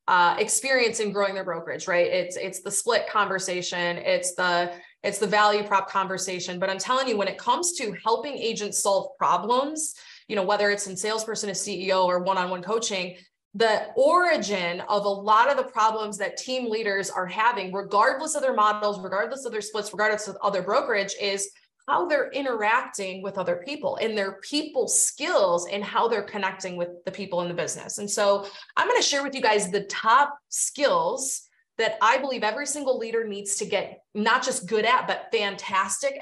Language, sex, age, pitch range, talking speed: English, female, 20-39, 190-245 Hz, 190 wpm